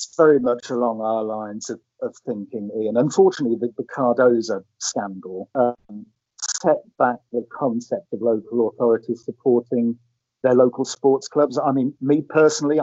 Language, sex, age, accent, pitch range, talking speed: English, male, 50-69, British, 115-135 Hz, 145 wpm